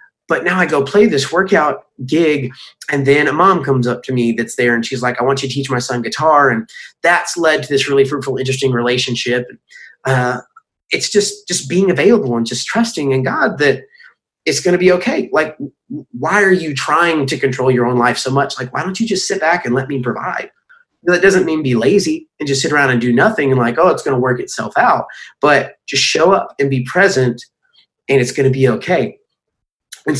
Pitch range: 125-180 Hz